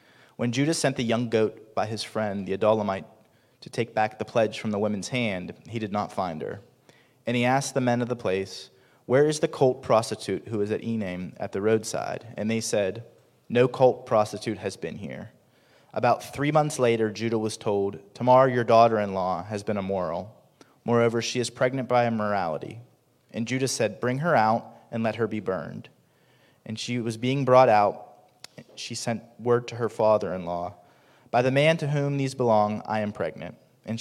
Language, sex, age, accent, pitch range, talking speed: English, male, 30-49, American, 110-125 Hz, 190 wpm